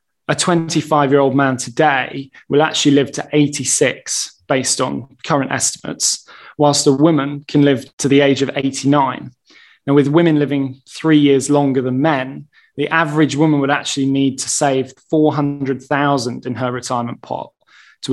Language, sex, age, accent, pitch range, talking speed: English, male, 20-39, British, 135-150 Hz, 160 wpm